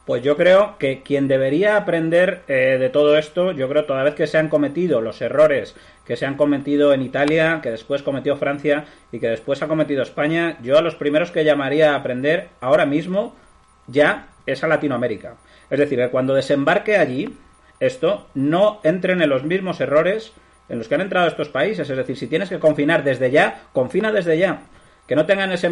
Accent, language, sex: Spanish, Spanish, male